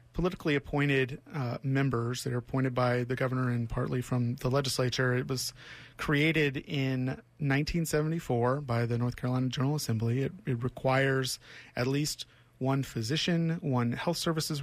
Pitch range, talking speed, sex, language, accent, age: 125-140 Hz, 150 wpm, male, English, American, 30-49